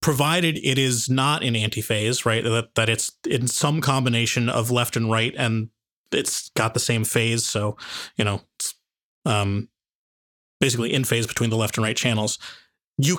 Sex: male